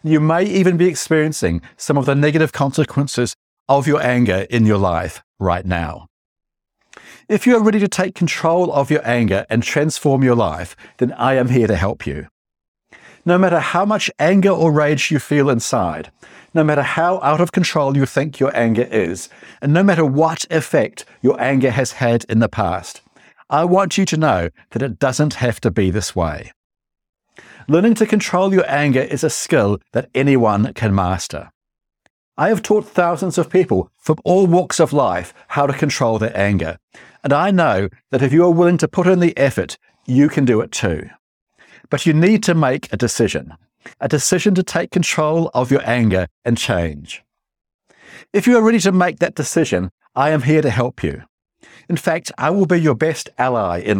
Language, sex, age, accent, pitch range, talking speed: English, male, 60-79, British, 115-170 Hz, 190 wpm